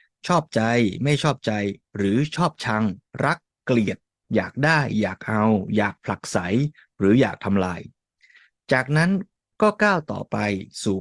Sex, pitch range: male, 105-145 Hz